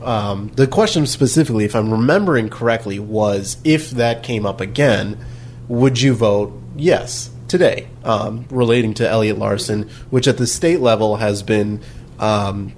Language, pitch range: English, 105-125 Hz